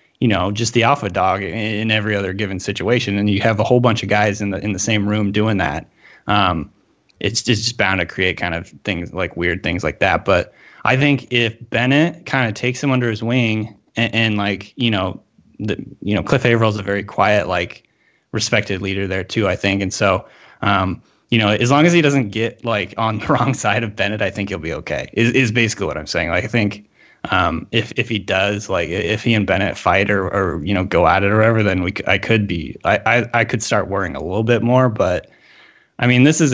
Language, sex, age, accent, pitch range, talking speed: English, male, 20-39, American, 95-115 Hz, 240 wpm